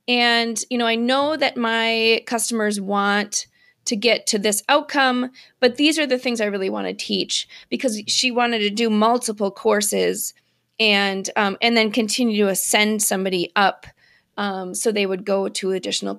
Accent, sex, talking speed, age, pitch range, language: American, female, 175 wpm, 30-49, 205-250 Hz, English